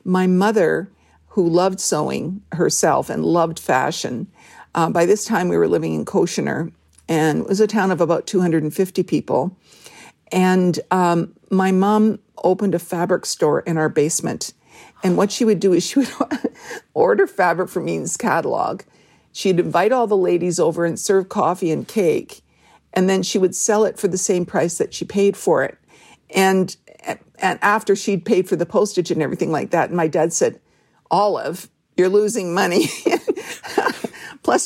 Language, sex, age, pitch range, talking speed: English, female, 50-69, 170-210 Hz, 170 wpm